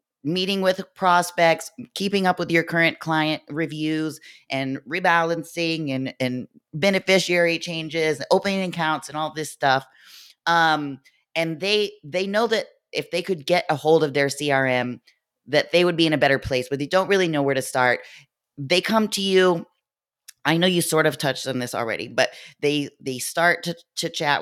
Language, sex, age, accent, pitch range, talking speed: English, female, 20-39, American, 140-175 Hz, 180 wpm